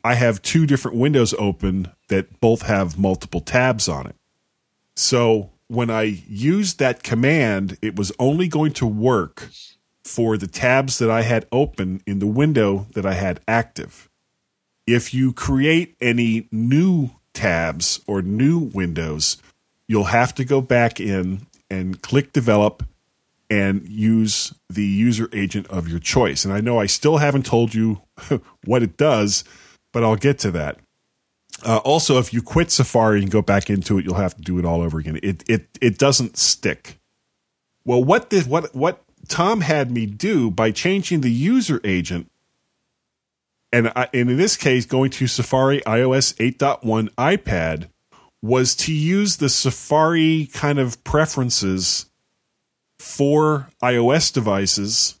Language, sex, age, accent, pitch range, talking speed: English, male, 40-59, American, 100-135 Hz, 155 wpm